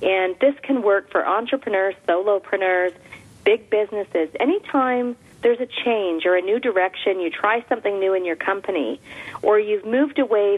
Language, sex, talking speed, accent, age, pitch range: English, female, 160 wpm, American, 40-59, 175-235 Hz